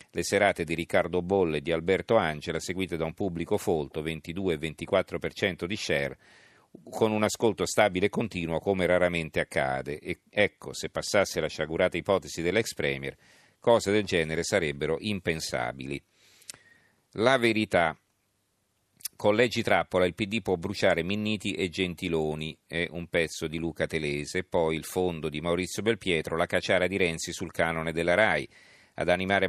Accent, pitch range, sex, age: native, 80-95 Hz, male, 50-69